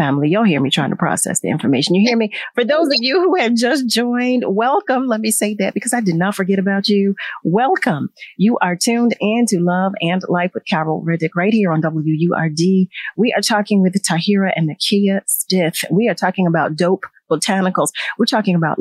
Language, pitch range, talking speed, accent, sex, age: English, 175-220 Hz, 205 wpm, American, female, 40-59